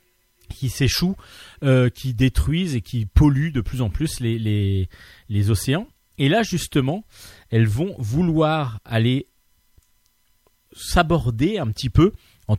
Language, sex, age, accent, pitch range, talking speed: French, male, 40-59, French, 105-145 Hz, 135 wpm